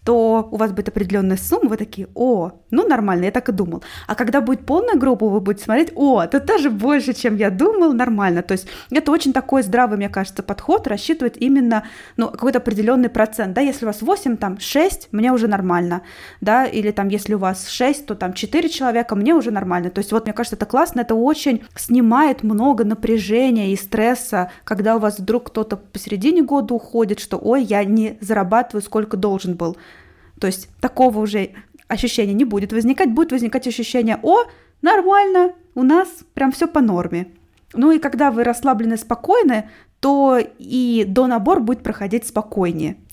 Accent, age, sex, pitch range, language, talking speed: native, 20-39, female, 210-265 Hz, Russian, 185 wpm